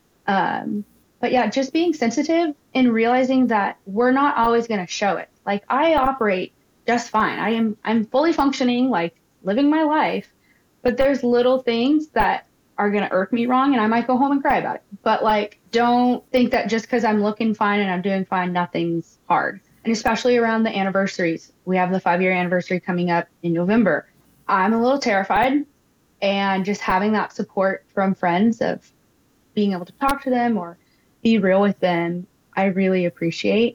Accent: American